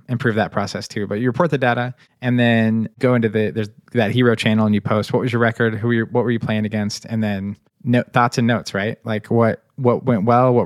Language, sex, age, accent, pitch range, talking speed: English, male, 20-39, American, 110-125 Hz, 260 wpm